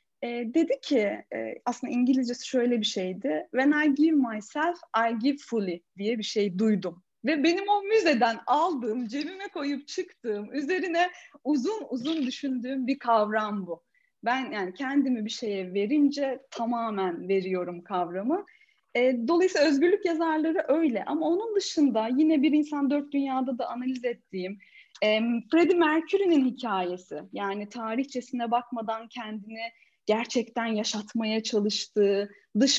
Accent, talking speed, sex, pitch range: native, 125 wpm, female, 215-295 Hz